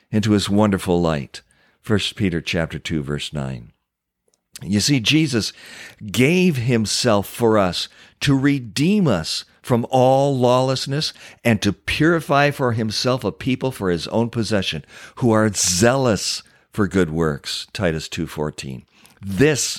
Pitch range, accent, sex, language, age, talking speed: 90-130 Hz, American, male, English, 50-69, 135 wpm